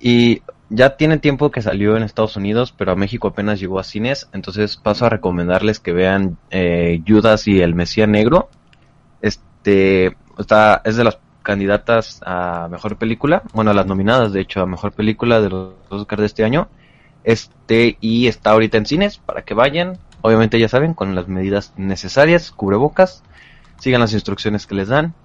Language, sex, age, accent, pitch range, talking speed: Spanish, male, 20-39, Mexican, 100-125 Hz, 180 wpm